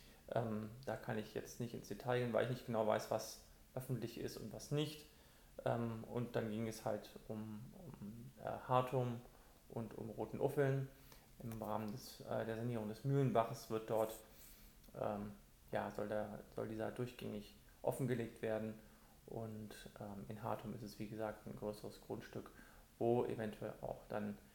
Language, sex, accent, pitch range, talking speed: German, male, German, 105-120 Hz, 165 wpm